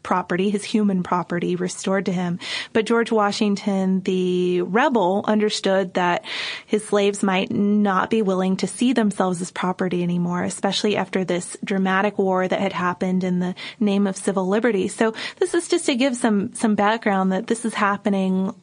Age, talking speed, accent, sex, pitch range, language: 20-39, 170 wpm, American, female, 190-215 Hz, English